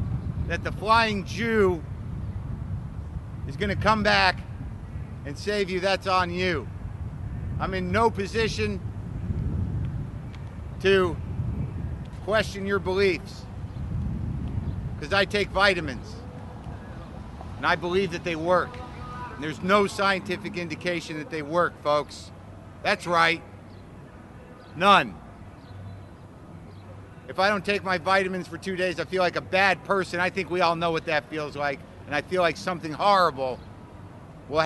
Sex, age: male, 50-69